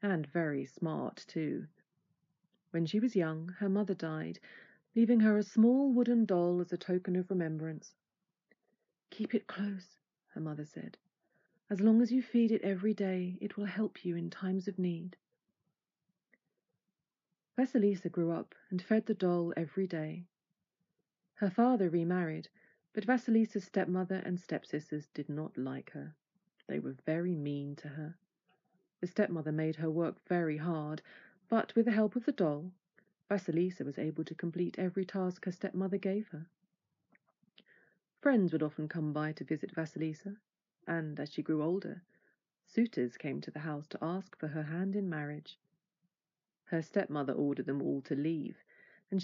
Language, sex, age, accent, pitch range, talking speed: English, female, 30-49, British, 160-200 Hz, 155 wpm